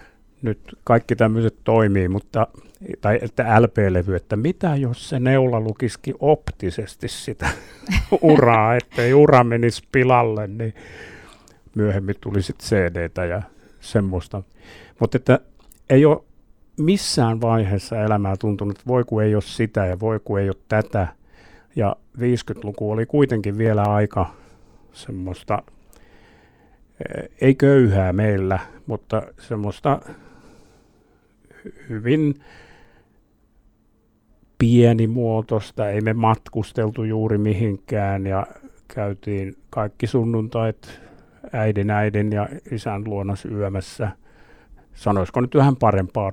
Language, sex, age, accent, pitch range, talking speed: Finnish, male, 60-79, native, 100-120 Hz, 100 wpm